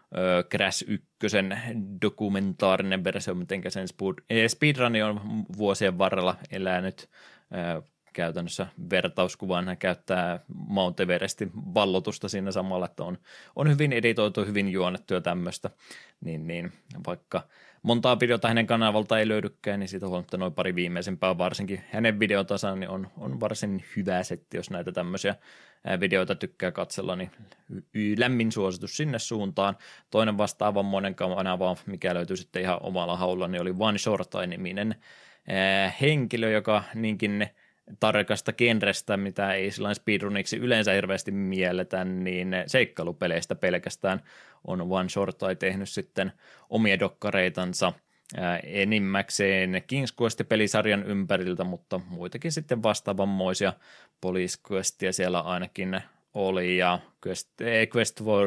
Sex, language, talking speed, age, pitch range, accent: male, Finnish, 115 wpm, 20-39, 90-105 Hz, native